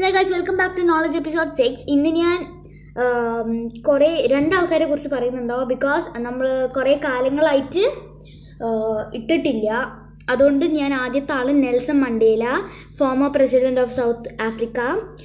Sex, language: female, Malayalam